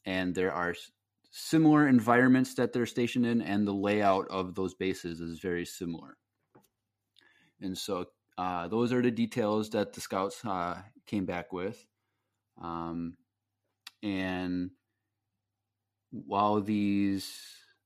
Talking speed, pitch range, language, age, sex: 120 wpm, 95-110 Hz, English, 30-49, male